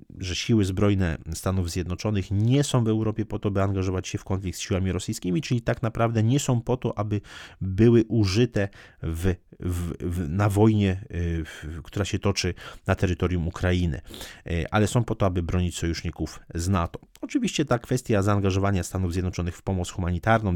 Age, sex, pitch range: 30-49, male, 90-110 Hz